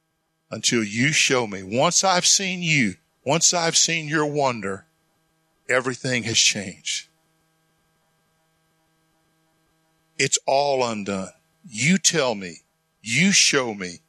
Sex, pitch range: male, 125-160 Hz